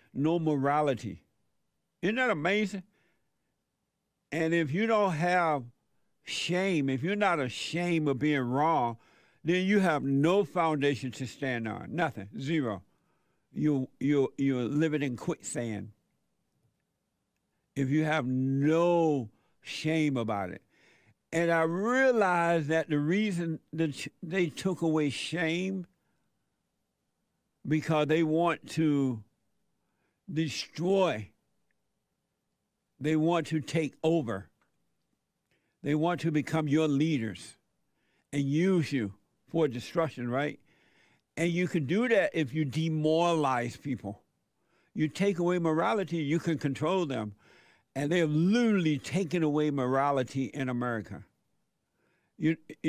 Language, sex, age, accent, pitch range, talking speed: English, male, 60-79, American, 135-170 Hz, 115 wpm